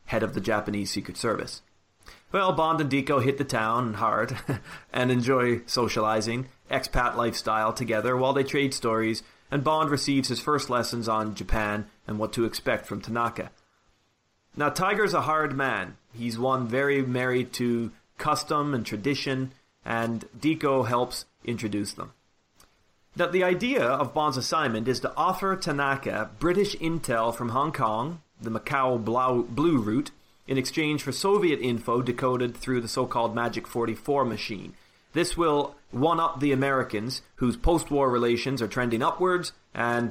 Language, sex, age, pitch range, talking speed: English, male, 30-49, 115-140 Hz, 150 wpm